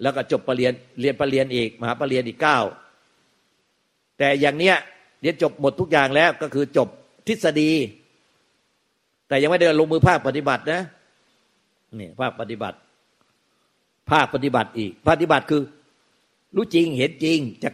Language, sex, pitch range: Thai, male, 110-140 Hz